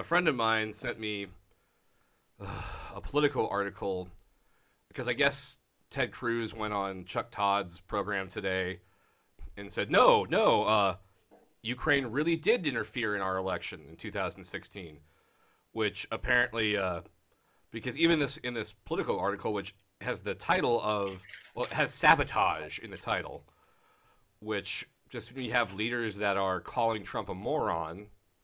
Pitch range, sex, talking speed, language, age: 95-120 Hz, male, 145 wpm, English, 30-49